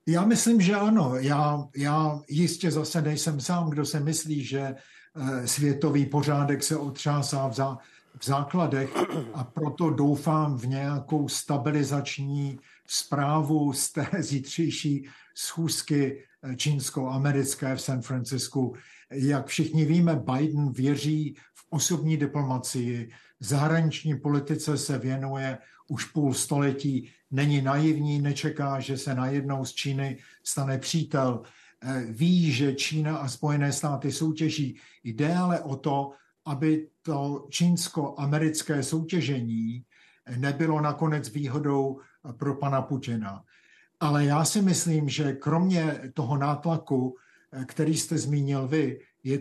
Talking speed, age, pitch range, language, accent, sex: 115 wpm, 50-69, 135-155 Hz, Czech, native, male